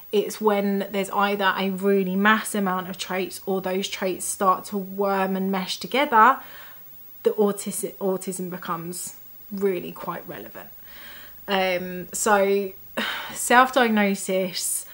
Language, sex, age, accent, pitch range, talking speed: English, female, 20-39, British, 185-210 Hz, 115 wpm